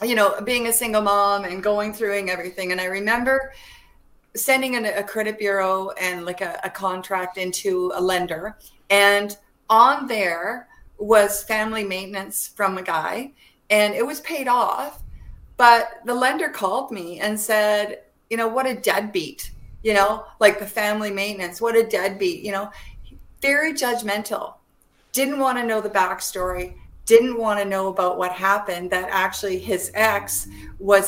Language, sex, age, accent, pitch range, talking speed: English, female, 40-59, American, 190-230 Hz, 160 wpm